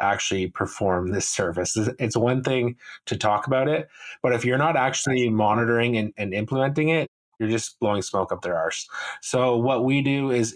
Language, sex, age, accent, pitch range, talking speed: English, male, 20-39, American, 105-125 Hz, 190 wpm